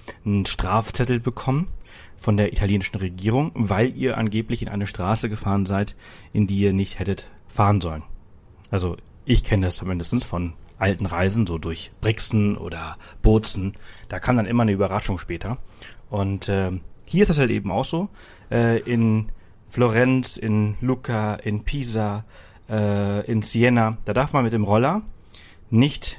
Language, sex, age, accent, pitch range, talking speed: German, male, 40-59, German, 95-120 Hz, 155 wpm